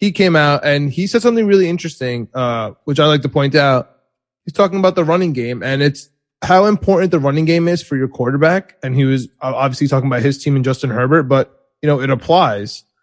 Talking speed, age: 225 wpm, 20-39